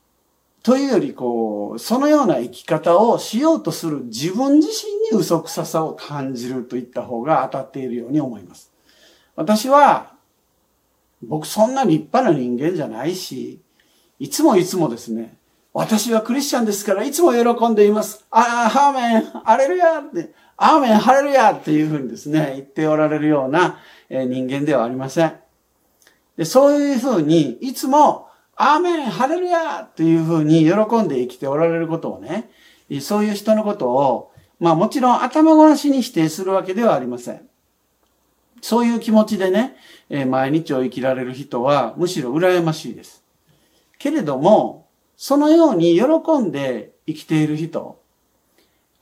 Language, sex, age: Japanese, male, 50-69